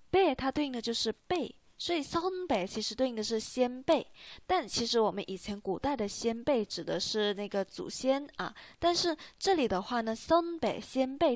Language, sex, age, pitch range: Chinese, female, 20-39, 210-300 Hz